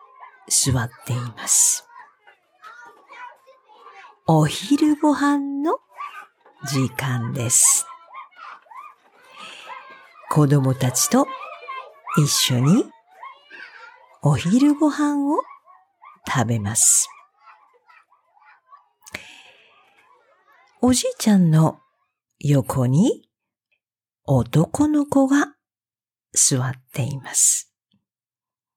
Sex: female